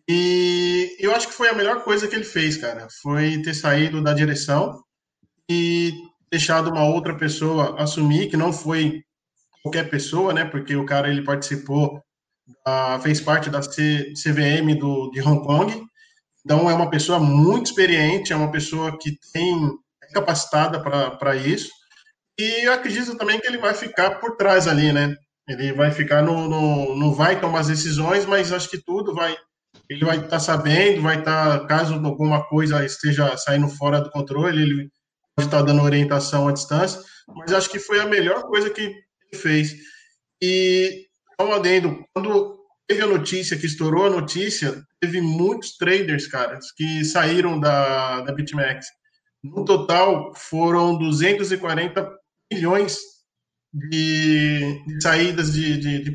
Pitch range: 145-185 Hz